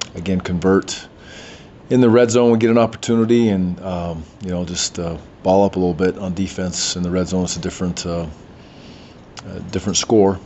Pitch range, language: 90-105 Hz, English